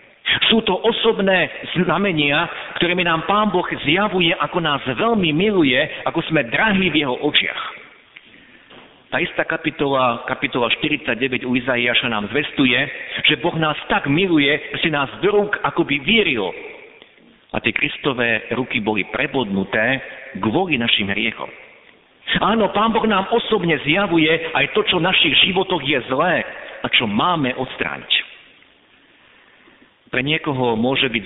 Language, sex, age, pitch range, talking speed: Slovak, male, 50-69, 125-180 Hz, 140 wpm